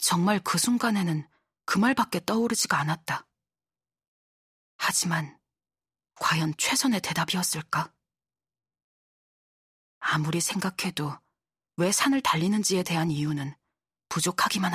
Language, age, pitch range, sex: Korean, 40-59, 150-190 Hz, female